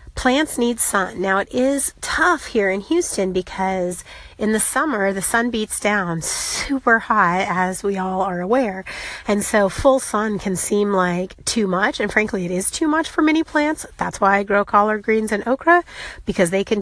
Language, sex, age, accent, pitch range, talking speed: English, female, 30-49, American, 185-225 Hz, 195 wpm